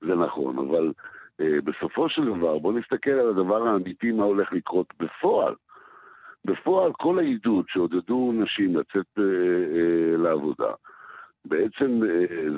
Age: 60-79